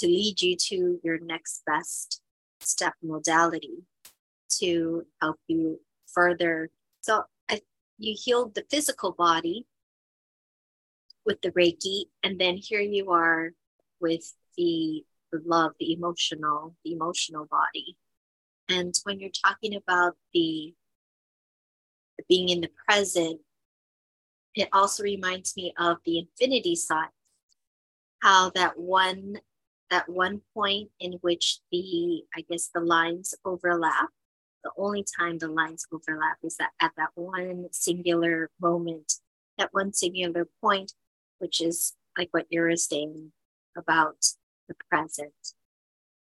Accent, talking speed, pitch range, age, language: American, 125 wpm, 165-195 Hz, 30-49, English